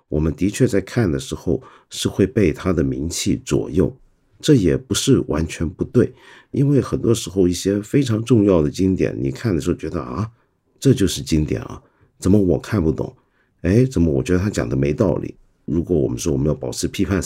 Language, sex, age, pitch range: Chinese, male, 50-69, 80-115 Hz